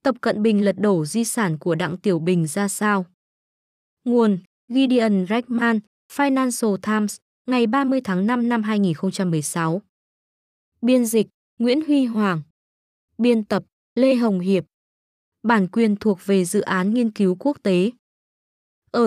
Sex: female